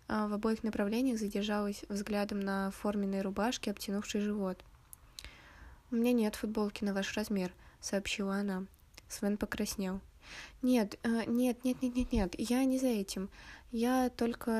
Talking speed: 135 wpm